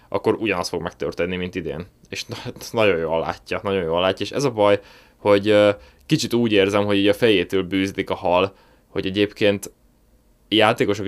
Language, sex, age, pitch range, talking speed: Hungarian, male, 20-39, 95-120 Hz, 170 wpm